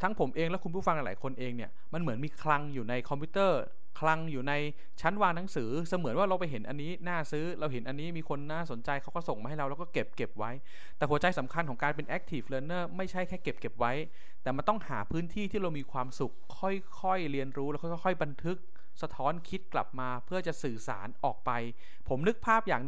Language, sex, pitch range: Thai, male, 130-180 Hz